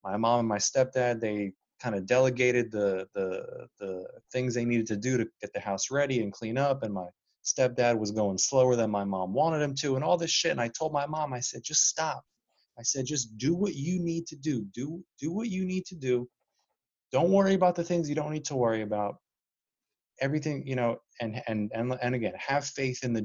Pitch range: 110-145 Hz